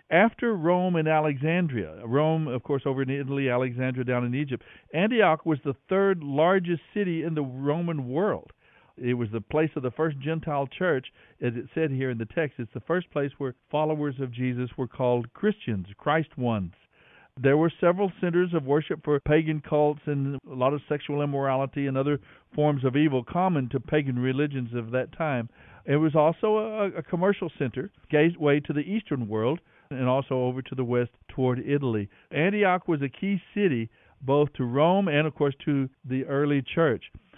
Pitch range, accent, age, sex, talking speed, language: 130-165 Hz, American, 60-79, male, 185 wpm, English